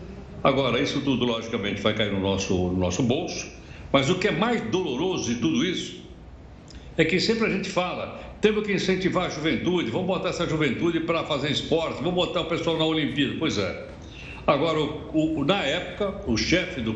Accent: Brazilian